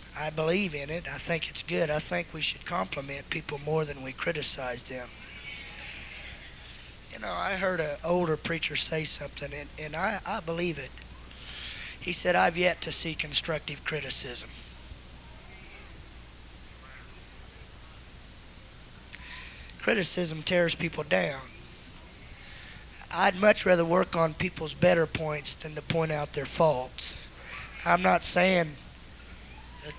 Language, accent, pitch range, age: English, American, 130-170 Hz, 20-39